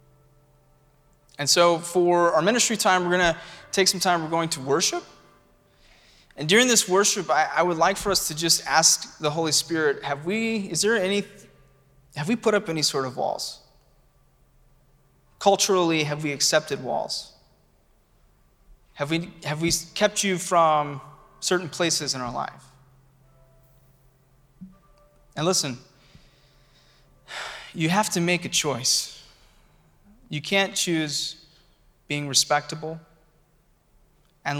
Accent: American